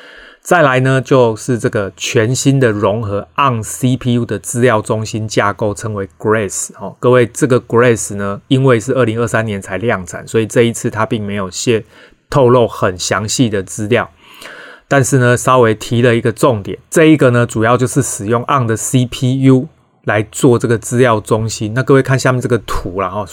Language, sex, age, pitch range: Chinese, male, 30-49, 110-130 Hz